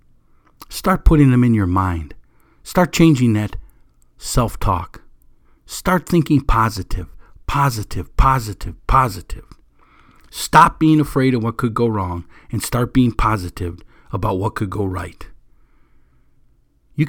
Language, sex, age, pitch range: English, male, 50-69, 110-150 Hz